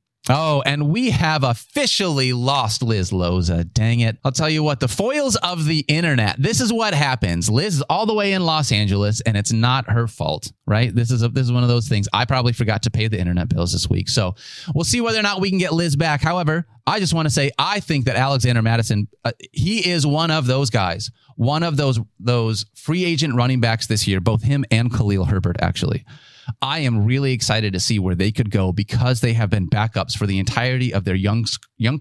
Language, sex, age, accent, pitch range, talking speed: English, male, 30-49, American, 110-140 Hz, 230 wpm